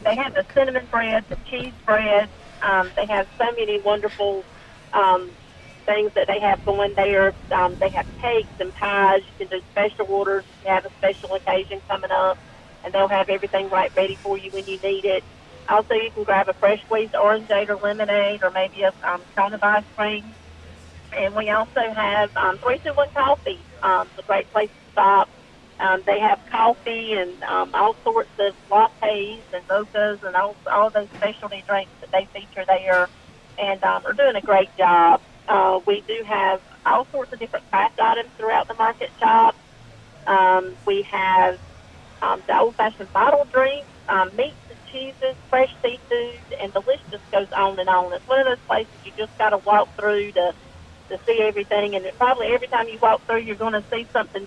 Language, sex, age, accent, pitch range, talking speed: English, female, 40-59, American, 190-230 Hz, 195 wpm